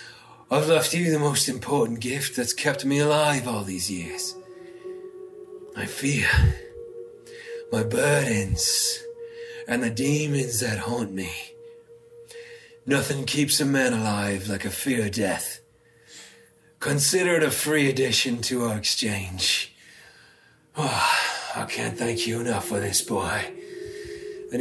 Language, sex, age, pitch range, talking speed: English, male, 30-49, 125-155 Hz, 125 wpm